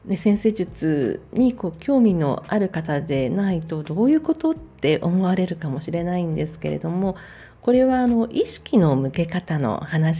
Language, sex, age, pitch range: Japanese, female, 40-59, 160-215 Hz